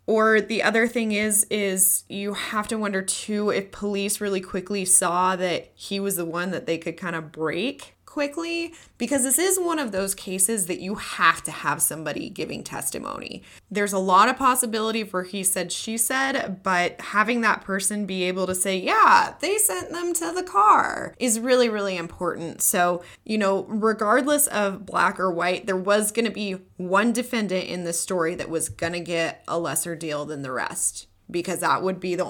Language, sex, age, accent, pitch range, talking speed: English, female, 20-39, American, 175-220 Hz, 195 wpm